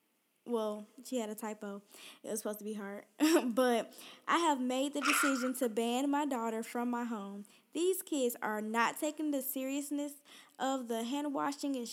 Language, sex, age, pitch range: English, female, 10-29, 225-285 Hz